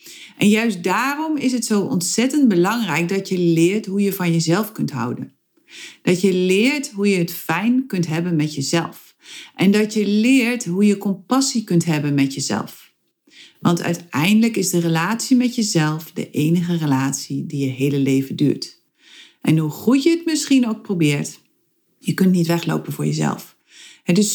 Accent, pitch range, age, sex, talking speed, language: Dutch, 165-225 Hz, 40-59, female, 170 wpm, Dutch